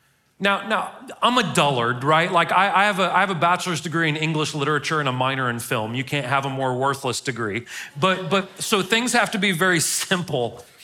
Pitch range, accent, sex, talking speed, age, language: 150-205 Hz, American, male, 220 wpm, 40-59, English